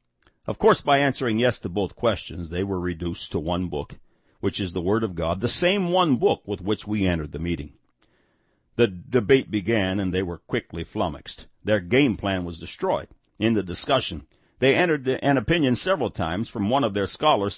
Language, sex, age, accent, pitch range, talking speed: English, male, 60-79, American, 85-115 Hz, 195 wpm